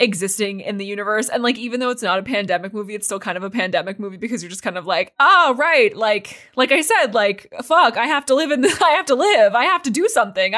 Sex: female